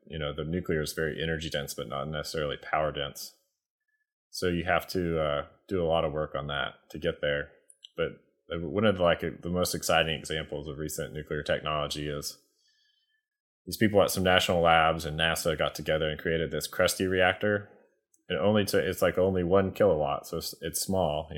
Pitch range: 75-90 Hz